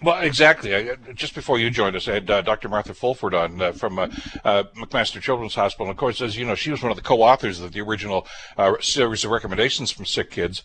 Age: 60-79